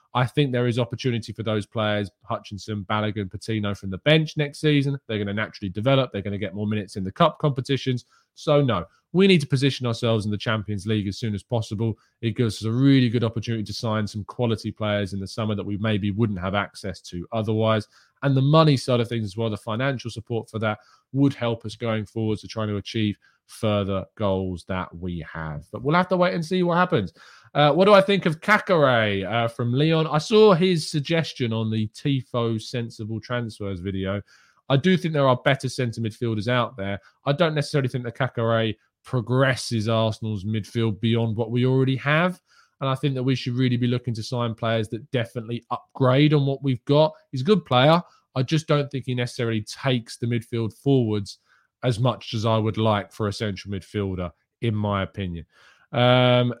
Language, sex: English, male